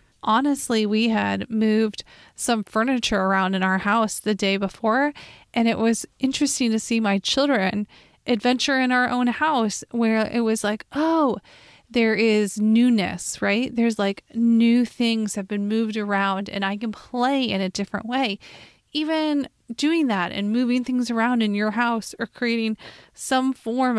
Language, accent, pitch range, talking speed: English, American, 205-245 Hz, 165 wpm